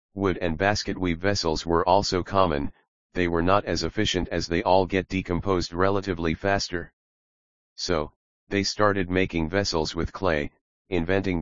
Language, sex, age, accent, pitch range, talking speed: English, male, 40-59, American, 80-95 Hz, 145 wpm